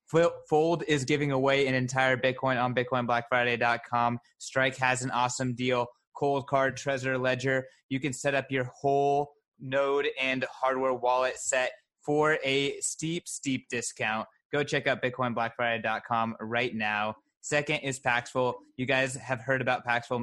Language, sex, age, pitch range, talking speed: English, male, 20-39, 120-135 Hz, 145 wpm